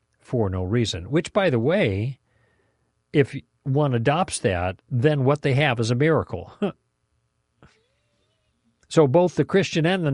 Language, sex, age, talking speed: English, male, 50-69, 140 wpm